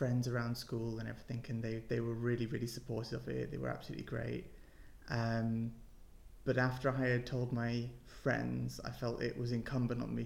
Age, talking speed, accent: 20-39, 195 wpm, British